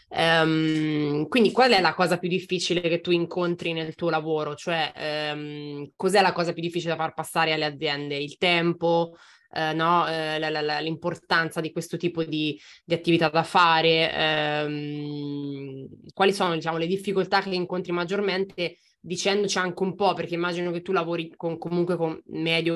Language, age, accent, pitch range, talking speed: Italian, 20-39, native, 155-175 Hz, 170 wpm